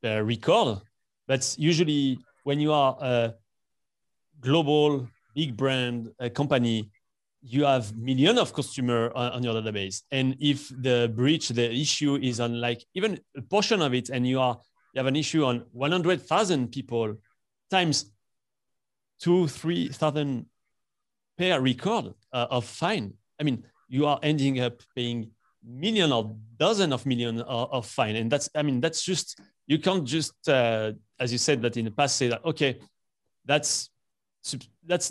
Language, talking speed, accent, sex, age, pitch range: English, 160 wpm, French, male, 30-49, 115-145 Hz